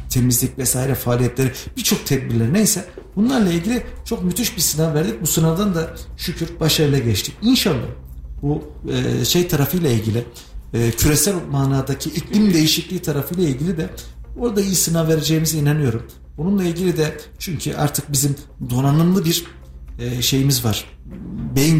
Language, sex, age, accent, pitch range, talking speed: Turkish, male, 50-69, native, 120-165 Hz, 130 wpm